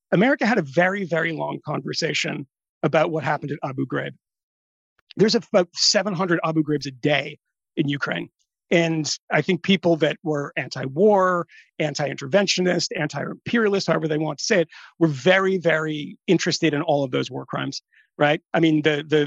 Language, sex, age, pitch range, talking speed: English, male, 40-59, 145-170 Hz, 160 wpm